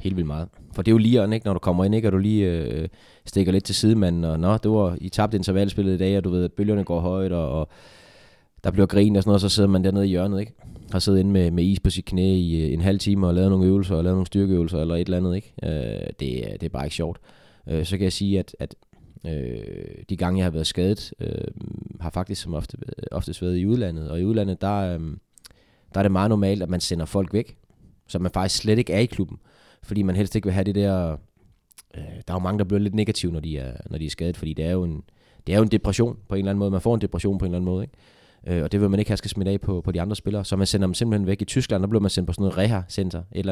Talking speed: 295 wpm